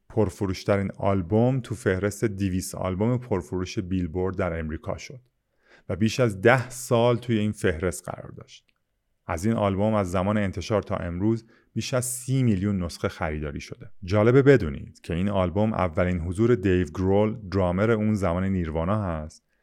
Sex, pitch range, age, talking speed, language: male, 85-105 Hz, 30-49, 155 wpm, Persian